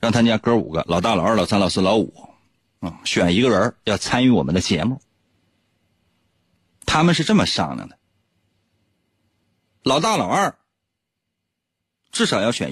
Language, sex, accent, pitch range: Chinese, male, native, 90-145 Hz